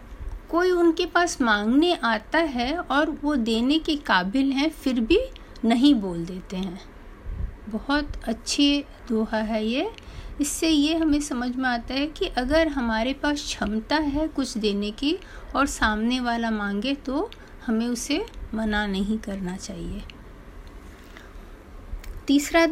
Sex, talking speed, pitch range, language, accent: female, 135 wpm, 210-295 Hz, Hindi, native